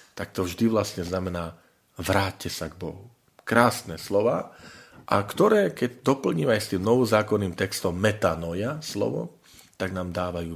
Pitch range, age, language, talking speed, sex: 85-115 Hz, 40-59, Slovak, 135 wpm, male